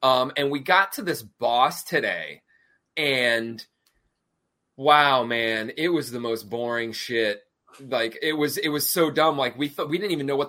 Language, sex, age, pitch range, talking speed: English, male, 20-39, 105-140 Hz, 185 wpm